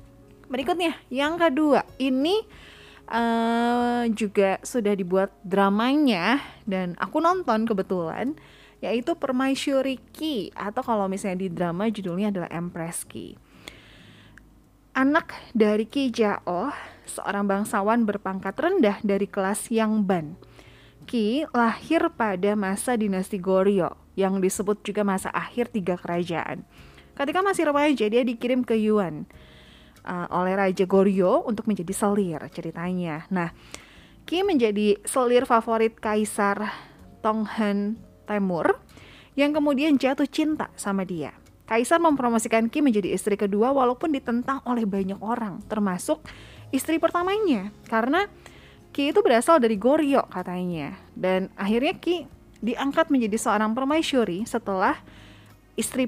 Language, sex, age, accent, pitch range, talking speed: Indonesian, female, 20-39, native, 195-265 Hz, 115 wpm